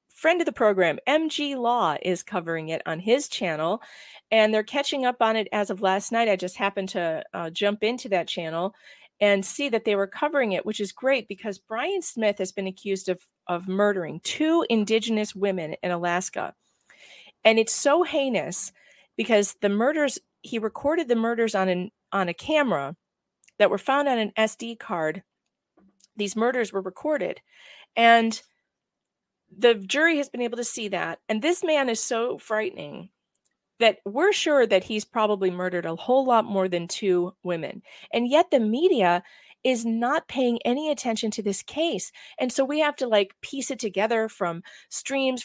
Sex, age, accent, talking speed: female, 40-59, American, 175 wpm